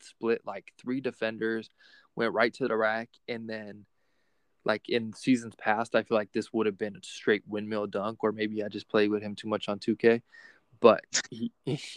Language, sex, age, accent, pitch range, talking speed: English, male, 20-39, American, 110-130 Hz, 195 wpm